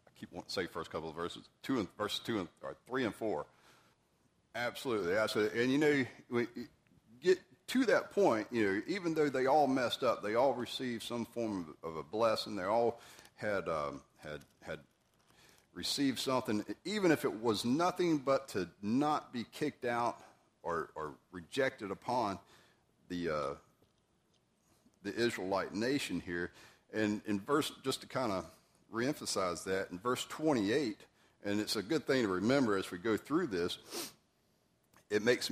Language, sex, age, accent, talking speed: English, male, 40-59, American, 165 wpm